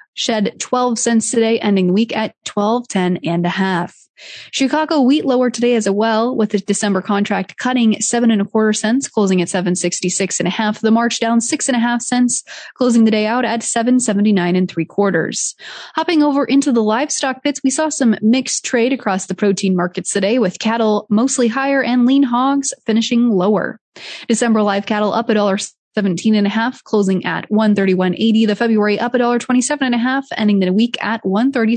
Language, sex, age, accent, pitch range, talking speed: English, female, 20-39, American, 200-250 Hz, 200 wpm